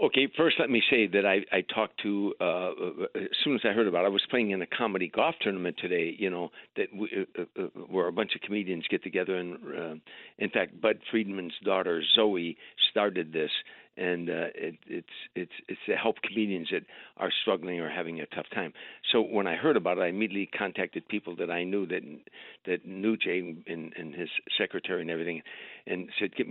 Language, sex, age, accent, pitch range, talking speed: English, male, 60-79, American, 85-110 Hz, 210 wpm